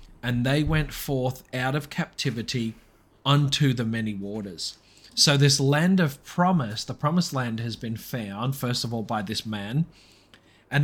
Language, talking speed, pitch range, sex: English, 160 wpm, 110-145 Hz, male